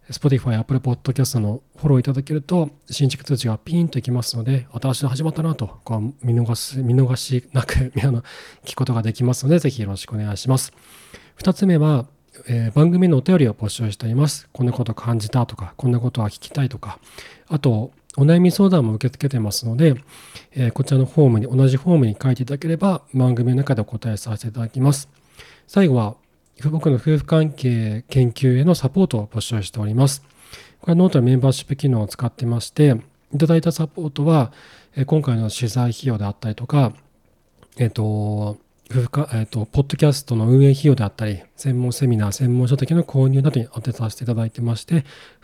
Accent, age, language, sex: native, 40-59, Japanese, male